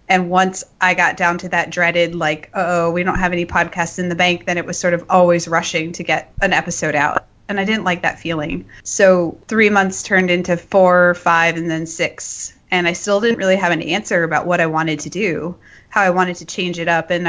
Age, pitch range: 20-39, 170-195 Hz